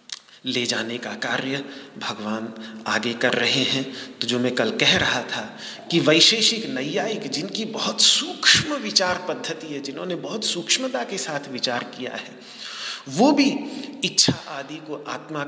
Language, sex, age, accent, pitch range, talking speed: Hindi, male, 40-59, native, 135-220 Hz, 150 wpm